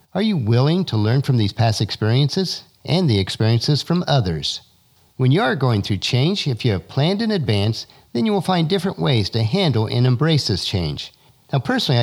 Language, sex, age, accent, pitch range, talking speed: English, male, 50-69, American, 110-150 Hz, 200 wpm